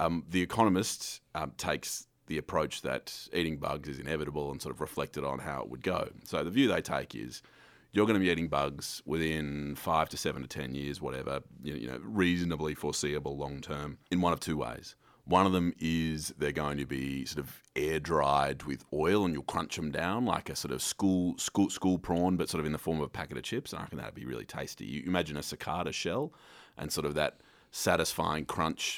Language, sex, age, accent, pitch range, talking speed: English, male, 30-49, Australian, 75-90 Hz, 220 wpm